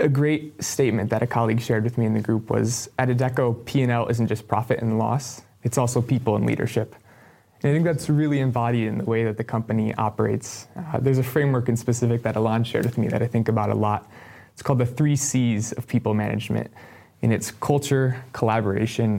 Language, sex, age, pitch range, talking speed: English, male, 20-39, 110-130 Hz, 215 wpm